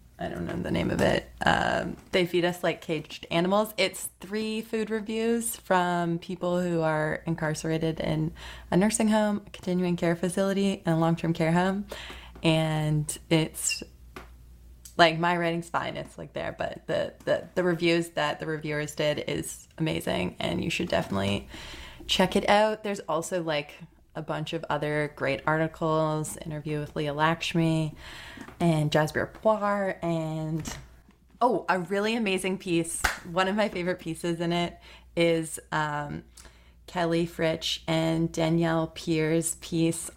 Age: 20-39